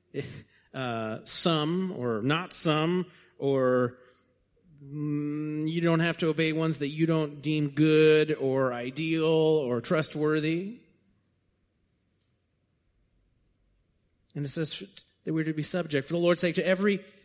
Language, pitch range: English, 130-175 Hz